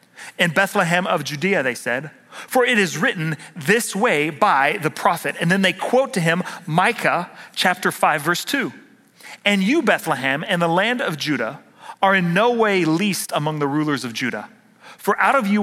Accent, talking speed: American, 185 wpm